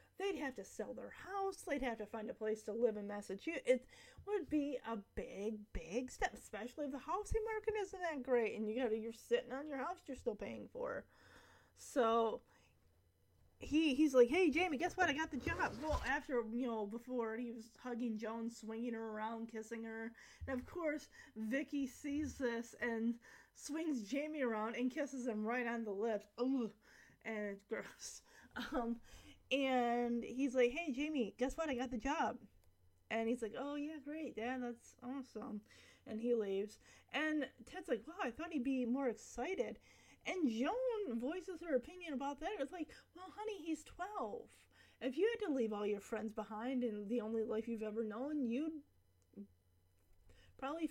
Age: 20-39